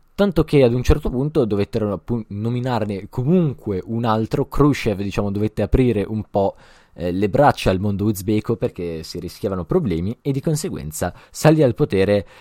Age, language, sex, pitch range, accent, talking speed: 20-39, Italian, male, 100-135 Hz, native, 150 wpm